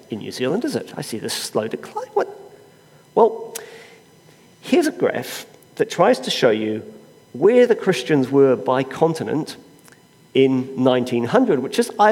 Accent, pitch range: British, 130-215 Hz